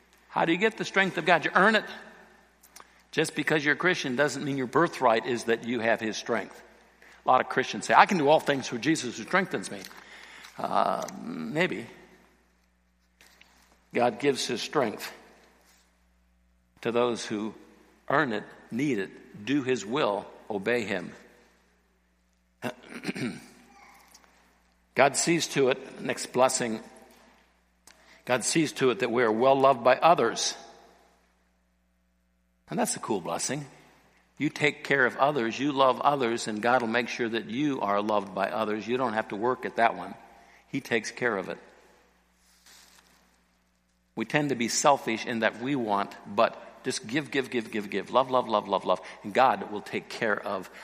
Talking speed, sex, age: 165 wpm, male, 60-79